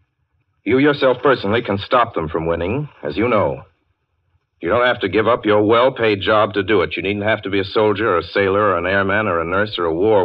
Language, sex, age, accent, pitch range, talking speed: English, male, 60-79, American, 95-115 Hz, 245 wpm